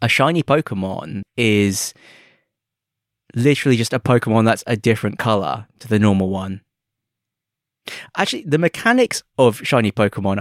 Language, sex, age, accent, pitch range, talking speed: English, male, 20-39, British, 100-135 Hz, 125 wpm